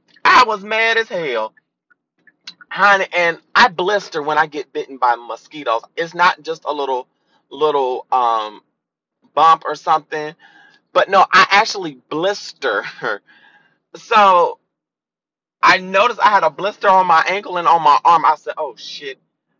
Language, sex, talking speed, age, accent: English, male, 145 wpm, 30-49, American